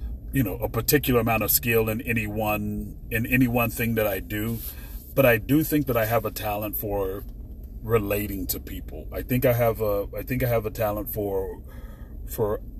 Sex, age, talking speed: male, 40-59, 200 wpm